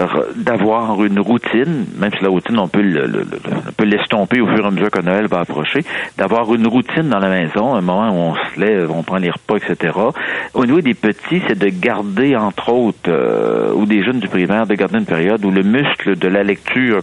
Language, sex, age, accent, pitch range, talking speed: French, male, 60-79, French, 95-110 Hz, 235 wpm